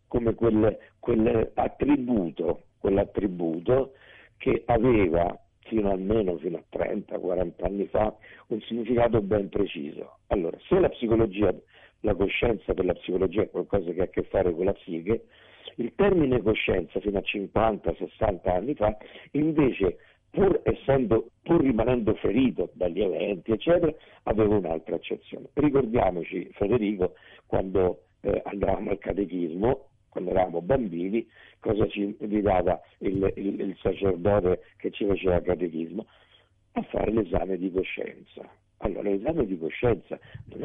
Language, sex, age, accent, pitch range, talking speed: Italian, male, 50-69, native, 95-115 Hz, 135 wpm